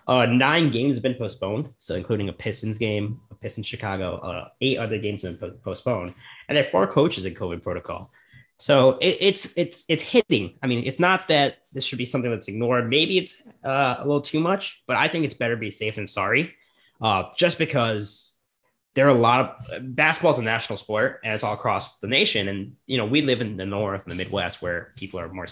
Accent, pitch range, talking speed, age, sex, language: American, 100-130 Hz, 230 wpm, 20-39, male, English